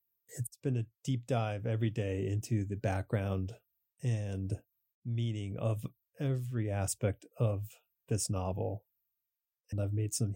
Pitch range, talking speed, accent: 105-130 Hz, 125 wpm, American